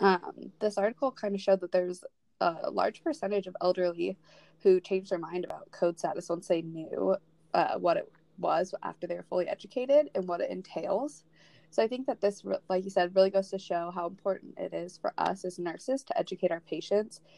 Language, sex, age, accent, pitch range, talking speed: English, female, 20-39, American, 170-195 Hz, 205 wpm